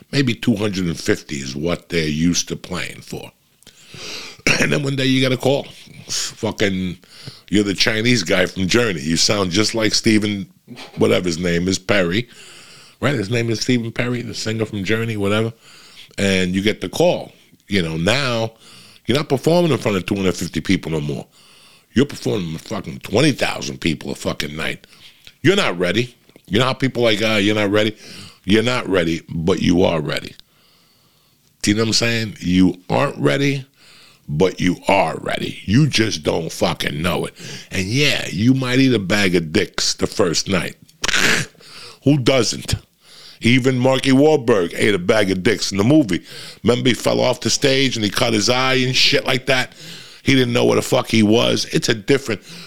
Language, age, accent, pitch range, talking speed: English, 60-79, American, 95-130 Hz, 185 wpm